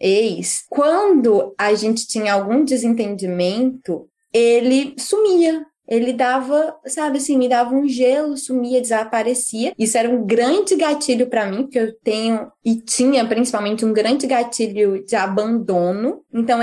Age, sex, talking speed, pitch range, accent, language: 10-29, female, 135 wpm, 200-280 Hz, Brazilian, Portuguese